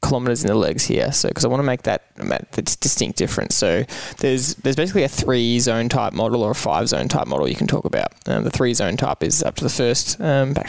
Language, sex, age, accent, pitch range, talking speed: English, male, 10-29, Australian, 120-140 Hz, 230 wpm